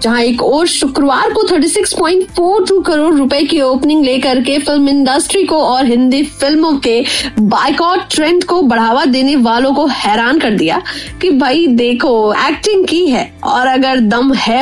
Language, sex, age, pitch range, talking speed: Hindi, female, 20-39, 250-345 Hz, 120 wpm